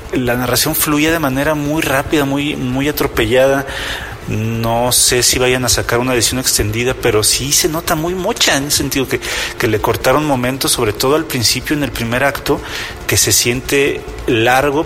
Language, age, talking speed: Spanish, 40-59, 180 wpm